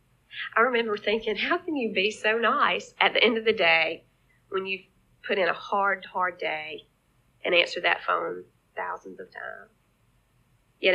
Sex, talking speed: female, 170 wpm